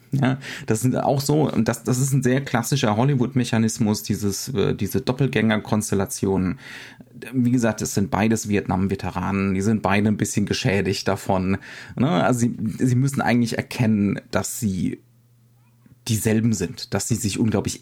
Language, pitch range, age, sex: German, 100-125 Hz, 30-49, male